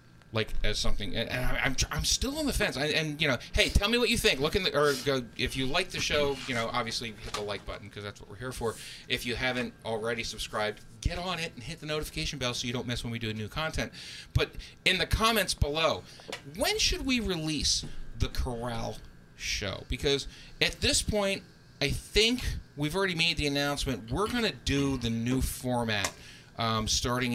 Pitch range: 110-145 Hz